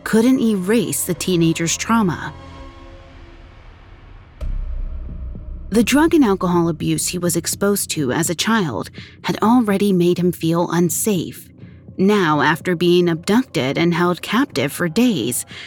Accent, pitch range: American, 155-225 Hz